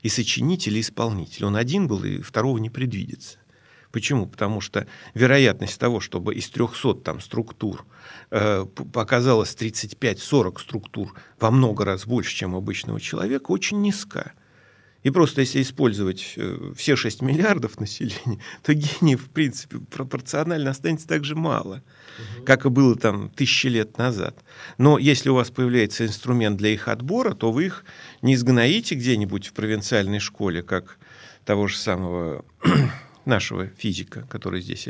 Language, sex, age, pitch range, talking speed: Russian, male, 40-59, 105-140 Hz, 145 wpm